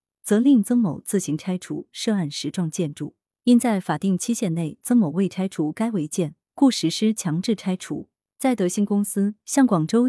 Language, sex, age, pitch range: Chinese, female, 30-49, 160-225 Hz